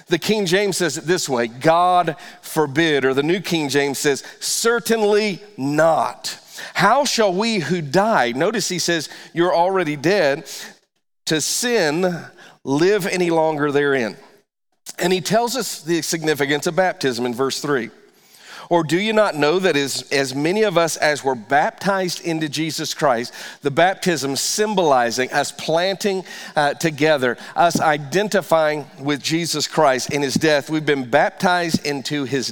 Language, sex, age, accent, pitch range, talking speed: English, male, 50-69, American, 150-190 Hz, 150 wpm